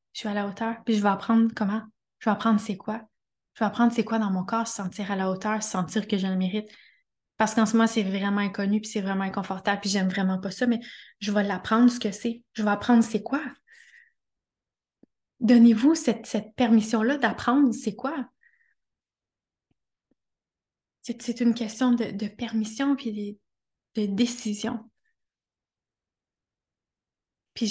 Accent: Canadian